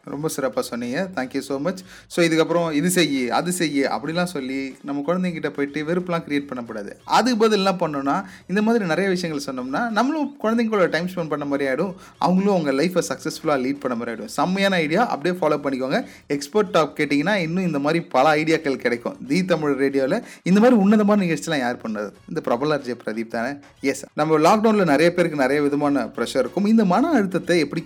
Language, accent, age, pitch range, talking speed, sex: Tamil, native, 30-49, 135-175 Hz, 180 wpm, male